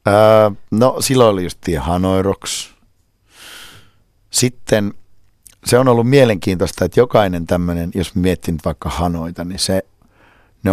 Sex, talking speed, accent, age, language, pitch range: male, 130 wpm, native, 50-69, Finnish, 75-95 Hz